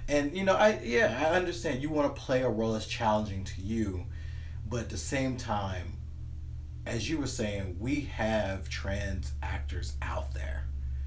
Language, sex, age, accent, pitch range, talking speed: English, male, 30-49, American, 100-125 Hz, 175 wpm